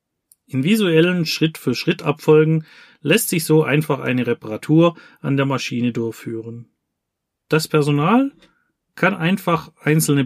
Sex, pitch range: male, 130-165 Hz